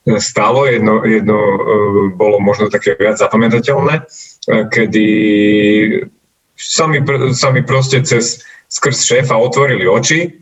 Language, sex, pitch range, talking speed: Slovak, male, 105-135 Hz, 105 wpm